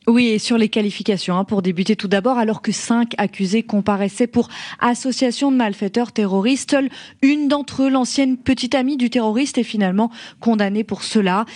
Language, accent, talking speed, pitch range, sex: French, French, 175 wpm, 190-240 Hz, female